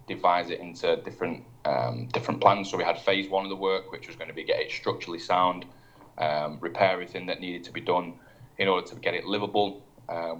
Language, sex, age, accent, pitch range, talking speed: English, male, 20-39, British, 95-125 Hz, 225 wpm